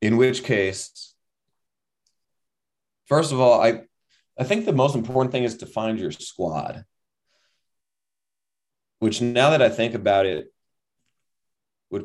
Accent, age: American, 30-49